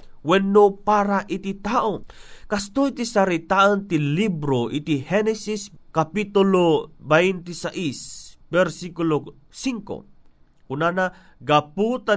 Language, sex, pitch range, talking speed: Filipino, male, 165-215 Hz, 90 wpm